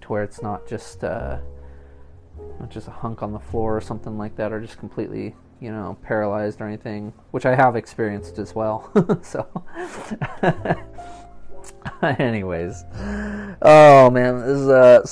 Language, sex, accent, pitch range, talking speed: English, male, American, 105-135 Hz, 150 wpm